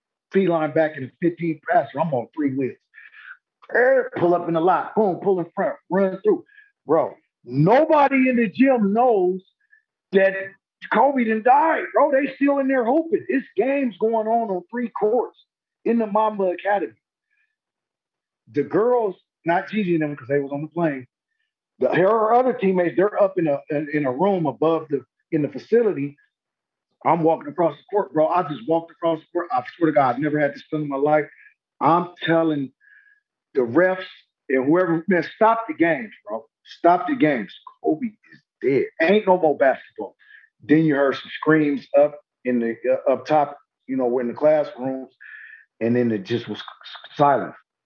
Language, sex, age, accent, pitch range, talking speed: English, male, 50-69, American, 140-230 Hz, 180 wpm